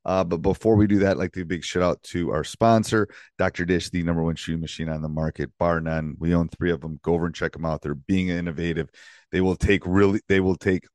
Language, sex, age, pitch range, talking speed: English, male, 40-59, 80-100 Hz, 275 wpm